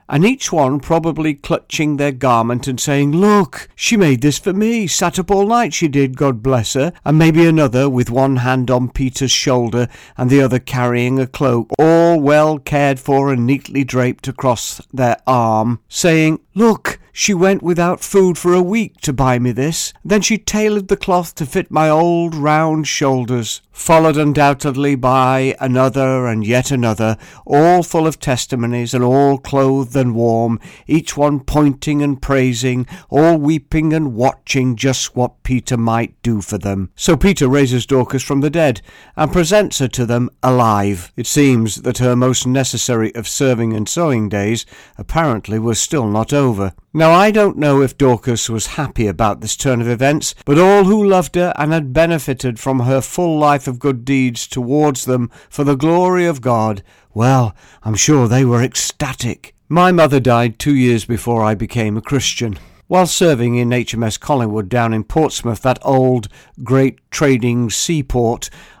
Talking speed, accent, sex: 175 wpm, British, male